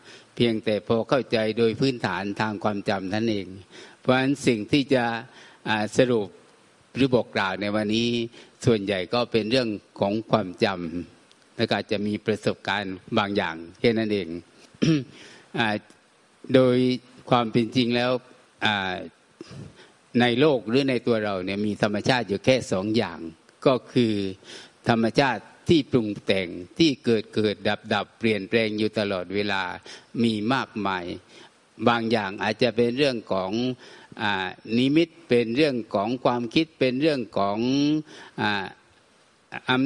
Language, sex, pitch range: Thai, male, 105-125 Hz